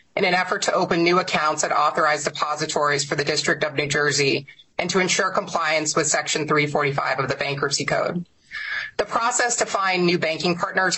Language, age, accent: English, 30-49, American